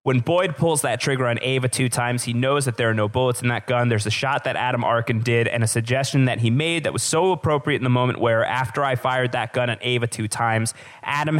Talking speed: 265 wpm